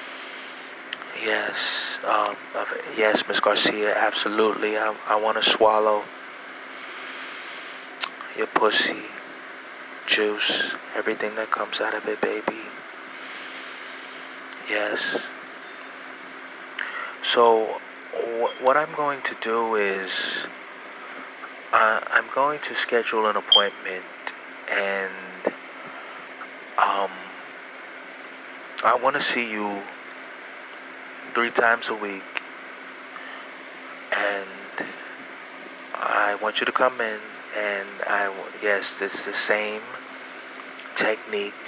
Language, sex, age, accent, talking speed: English, male, 20-39, American, 90 wpm